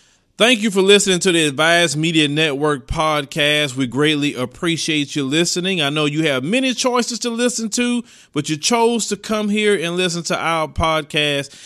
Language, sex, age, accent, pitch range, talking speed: English, male, 30-49, American, 145-180 Hz, 180 wpm